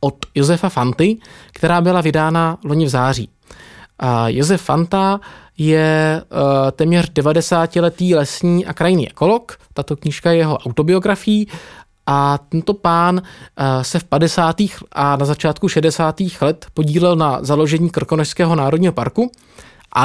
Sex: male